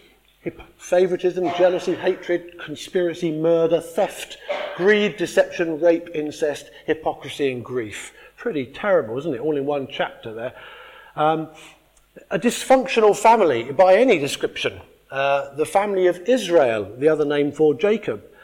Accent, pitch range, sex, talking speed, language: British, 155-200 Hz, male, 125 wpm, English